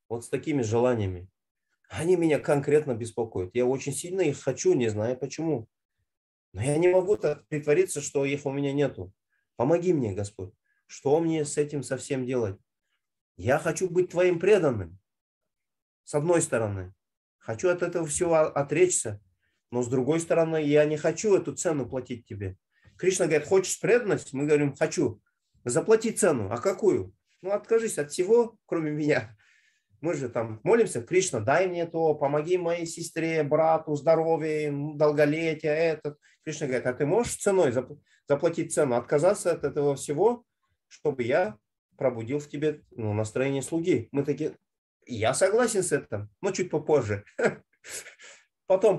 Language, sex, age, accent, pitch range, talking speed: Russian, male, 30-49, native, 125-170 Hz, 150 wpm